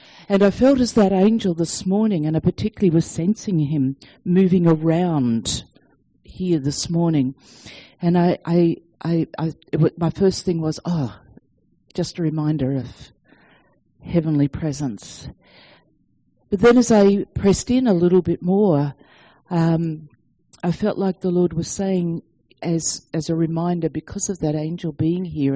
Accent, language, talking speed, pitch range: Australian, English, 155 wpm, 160-210 Hz